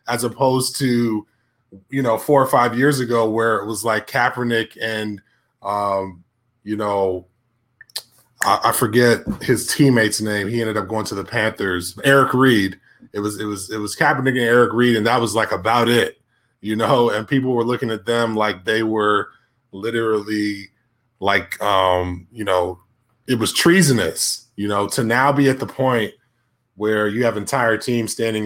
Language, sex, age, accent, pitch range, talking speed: English, male, 20-39, American, 100-120 Hz, 175 wpm